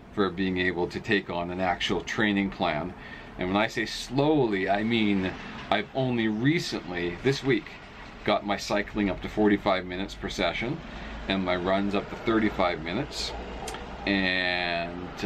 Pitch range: 95-110 Hz